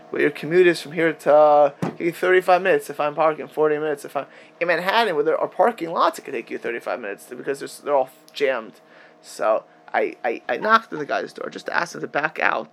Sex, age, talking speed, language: male, 20-39, 245 wpm, English